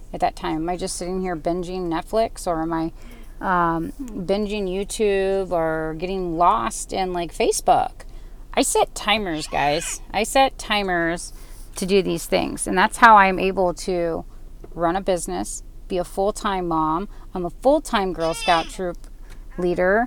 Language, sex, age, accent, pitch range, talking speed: English, female, 30-49, American, 175-225 Hz, 160 wpm